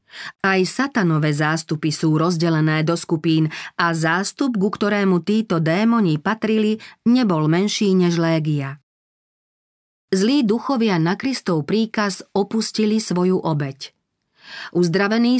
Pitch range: 160-210 Hz